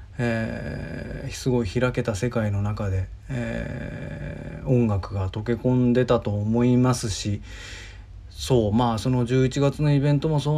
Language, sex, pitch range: Japanese, male, 100-125 Hz